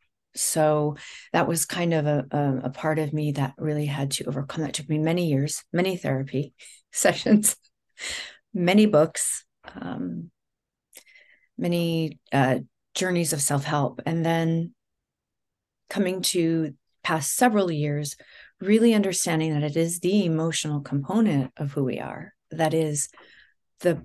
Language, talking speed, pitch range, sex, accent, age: English, 135 wpm, 145-175 Hz, female, American, 40-59